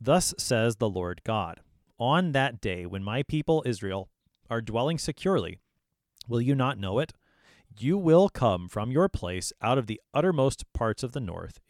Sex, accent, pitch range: male, American, 100-135 Hz